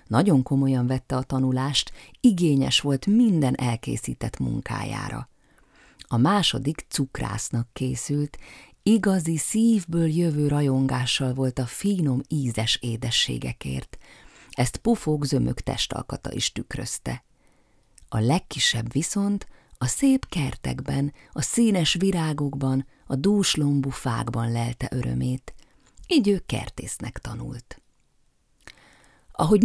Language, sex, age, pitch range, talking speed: Hungarian, female, 30-49, 125-160 Hz, 95 wpm